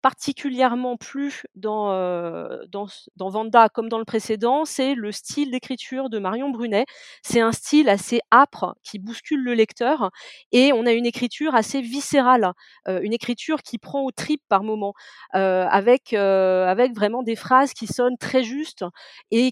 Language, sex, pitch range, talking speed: French, female, 205-270 Hz, 170 wpm